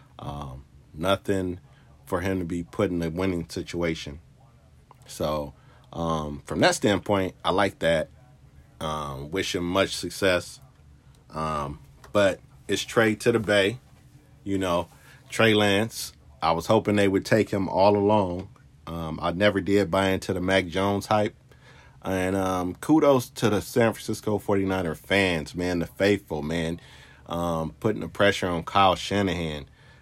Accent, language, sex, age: American, English, male, 40-59